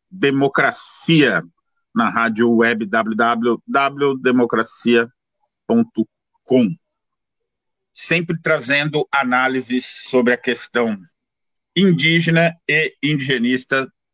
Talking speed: 60 wpm